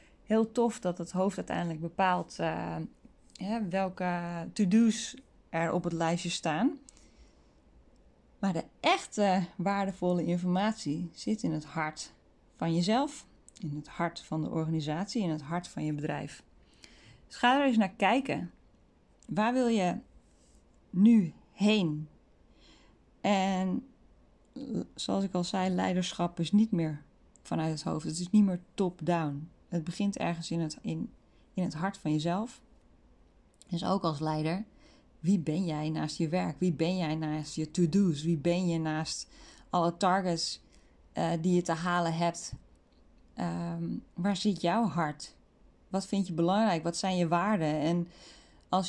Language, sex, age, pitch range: Dutch, female, 20-39, 155-195 Hz